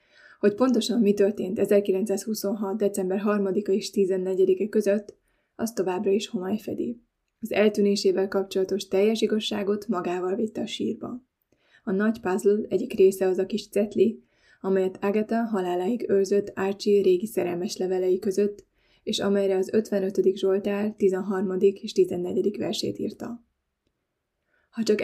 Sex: female